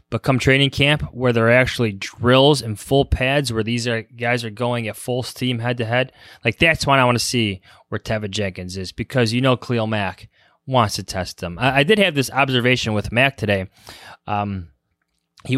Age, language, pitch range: 20-39, English, 105-130 Hz